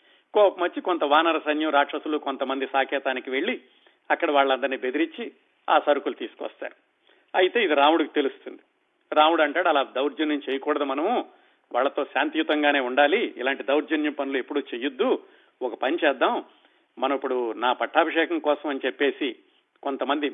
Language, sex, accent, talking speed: Telugu, male, native, 125 wpm